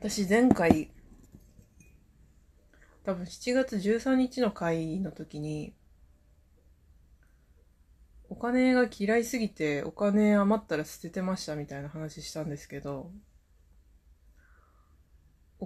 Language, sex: Japanese, female